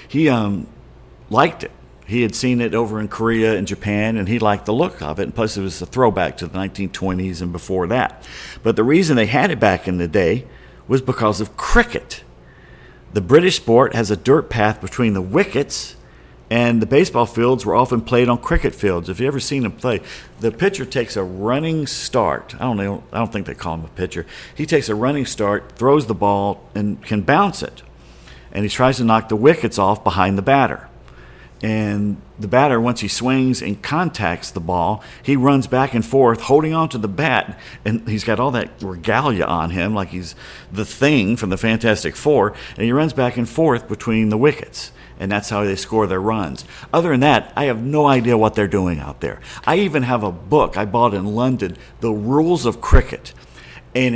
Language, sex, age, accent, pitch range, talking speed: English, male, 50-69, American, 95-125 Hz, 210 wpm